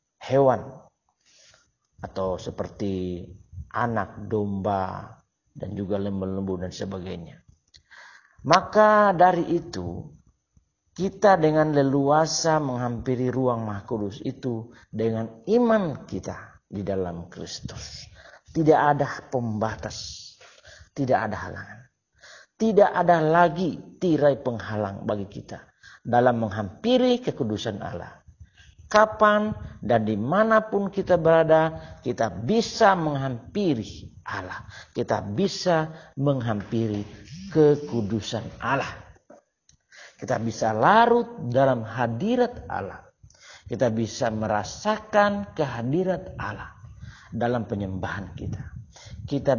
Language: Indonesian